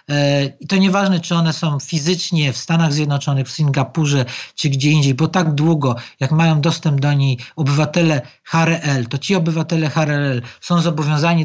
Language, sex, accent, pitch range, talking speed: Polish, male, native, 150-185 Hz, 160 wpm